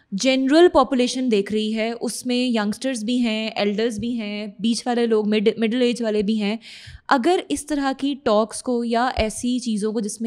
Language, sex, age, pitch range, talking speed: Urdu, female, 20-39, 215-255 Hz, 140 wpm